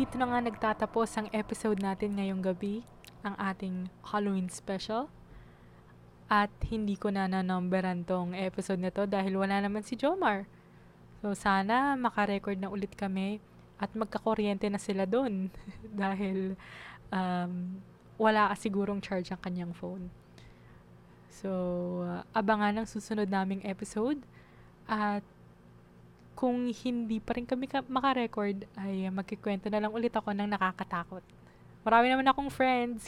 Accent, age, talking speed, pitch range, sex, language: native, 20-39, 130 wpm, 185-215 Hz, female, Filipino